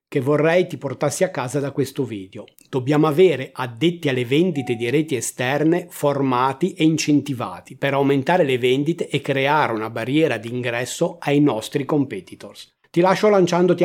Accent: native